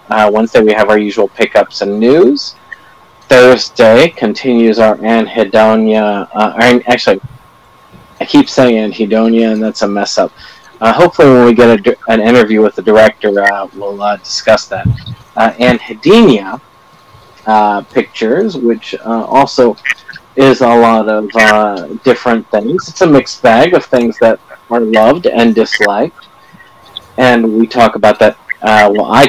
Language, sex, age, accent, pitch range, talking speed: English, male, 30-49, American, 105-120 Hz, 150 wpm